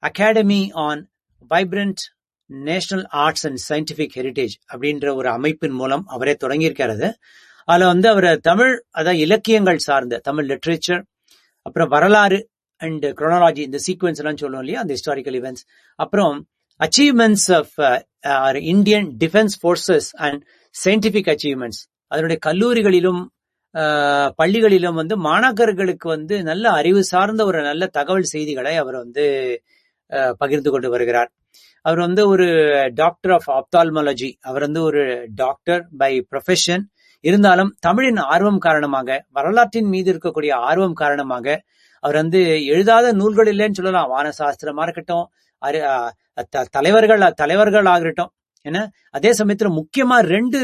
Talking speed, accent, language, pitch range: 95 wpm, Indian, English, 145-200 Hz